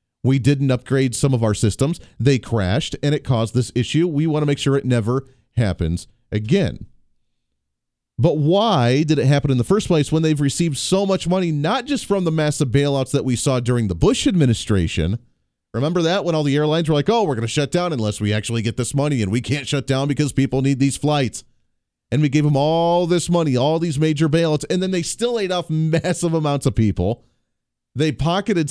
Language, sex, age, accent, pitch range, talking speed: English, male, 30-49, American, 120-160 Hz, 215 wpm